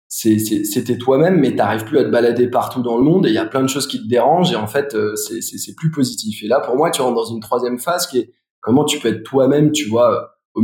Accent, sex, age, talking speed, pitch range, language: French, male, 20-39, 305 wpm, 110-140 Hz, French